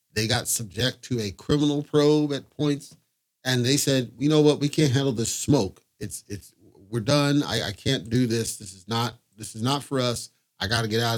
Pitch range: 110-140 Hz